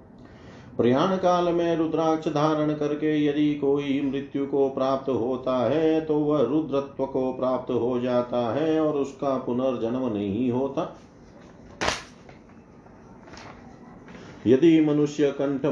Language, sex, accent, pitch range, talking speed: Hindi, male, native, 110-140 Hz, 110 wpm